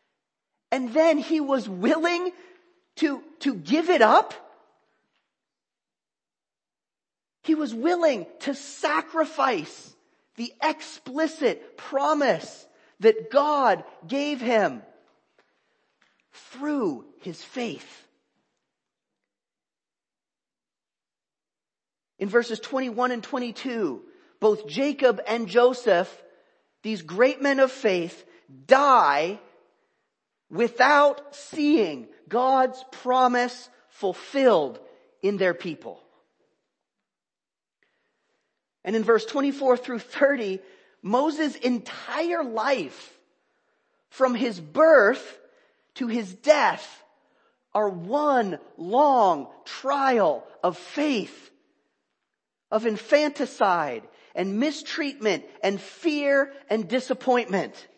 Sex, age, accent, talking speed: male, 40-59, American, 80 wpm